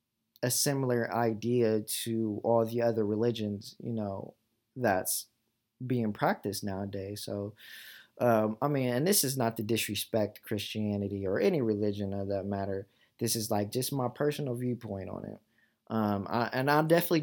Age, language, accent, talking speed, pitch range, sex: 20-39, English, American, 155 wpm, 105-125 Hz, male